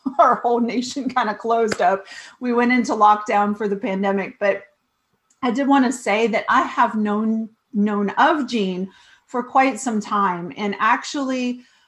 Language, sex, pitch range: English, female, 205-255 Hz